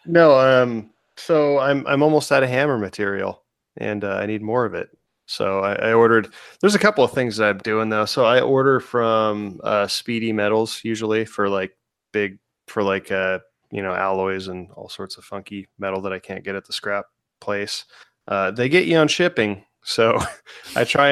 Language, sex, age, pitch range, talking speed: English, male, 20-39, 100-120 Hz, 200 wpm